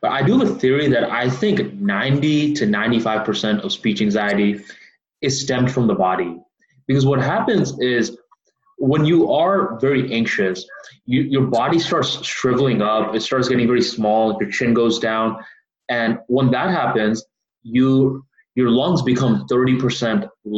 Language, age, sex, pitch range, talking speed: English, 20-39, male, 115-140 Hz, 150 wpm